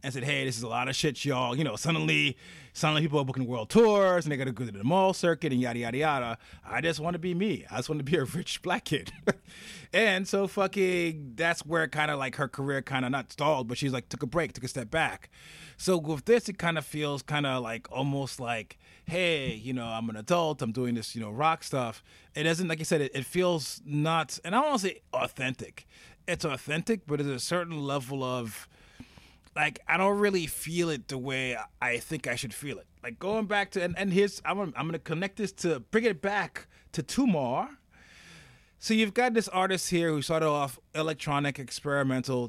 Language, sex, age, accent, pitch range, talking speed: English, male, 30-49, American, 130-165 Hz, 230 wpm